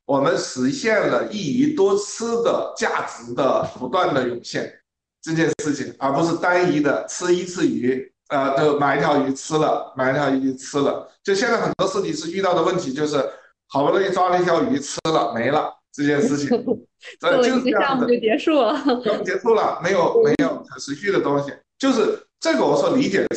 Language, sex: Chinese, male